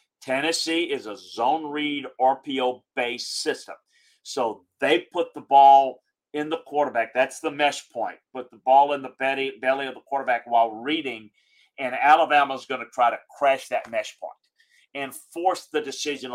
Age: 50-69